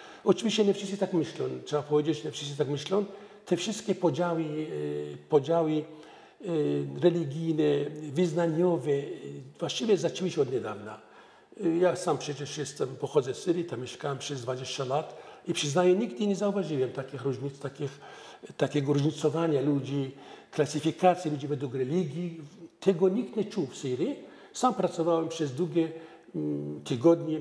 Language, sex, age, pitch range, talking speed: Polish, male, 50-69, 145-185 Hz, 125 wpm